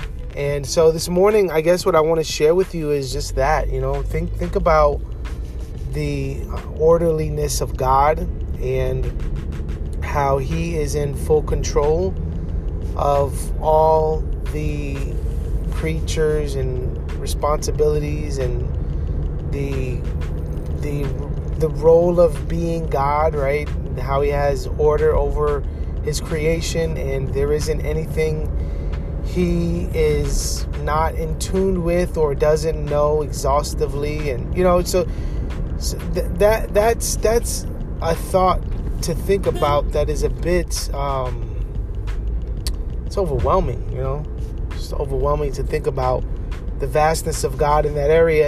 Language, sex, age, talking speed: English, male, 30-49, 125 wpm